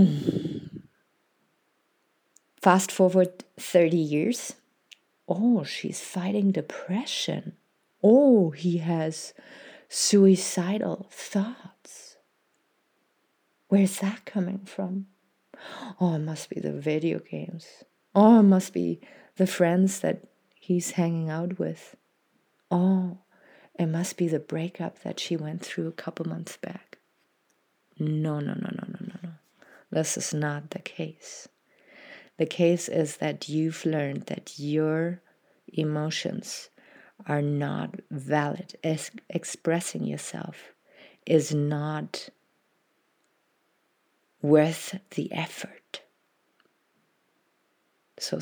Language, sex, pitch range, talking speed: English, female, 155-195 Hz, 100 wpm